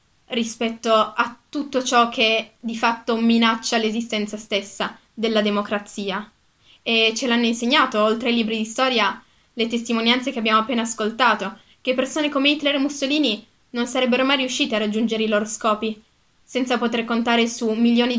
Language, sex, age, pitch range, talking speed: Italian, female, 20-39, 215-250 Hz, 155 wpm